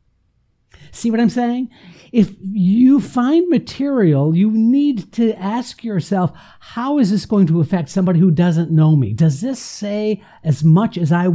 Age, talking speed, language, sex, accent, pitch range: 60-79, 165 wpm, English, male, American, 145-205 Hz